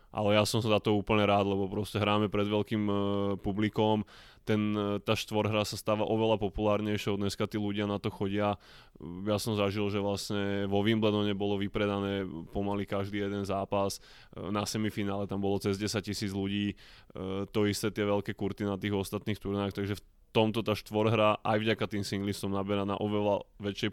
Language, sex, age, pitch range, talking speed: Slovak, male, 20-39, 100-105 Hz, 180 wpm